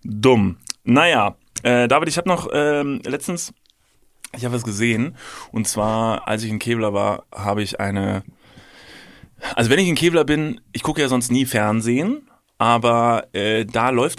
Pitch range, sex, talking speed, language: 105-135 Hz, male, 165 wpm, German